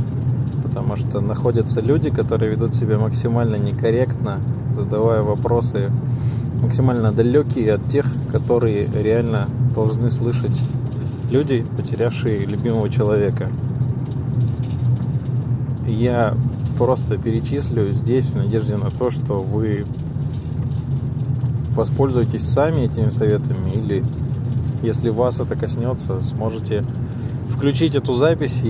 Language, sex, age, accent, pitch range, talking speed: Russian, male, 20-39, native, 120-130 Hz, 95 wpm